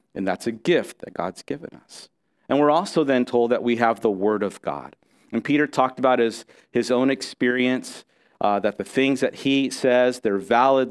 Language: English